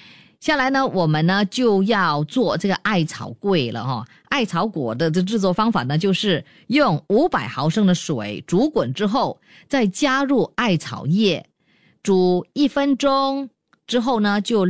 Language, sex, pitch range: Chinese, female, 160-245 Hz